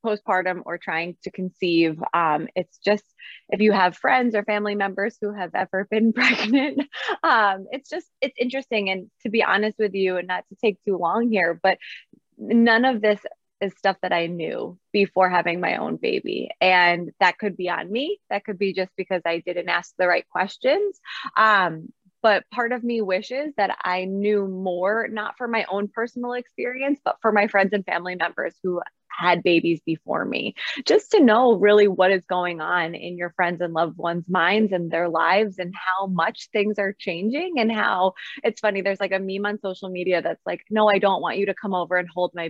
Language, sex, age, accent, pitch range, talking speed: English, female, 20-39, American, 180-215 Hz, 205 wpm